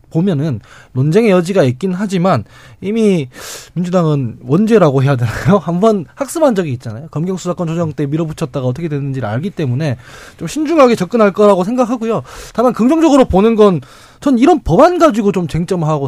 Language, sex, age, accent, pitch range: Korean, male, 20-39, native, 145-215 Hz